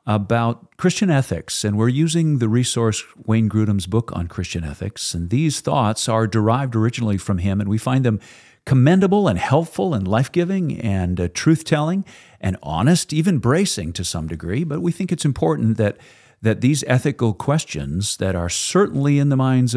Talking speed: 175 wpm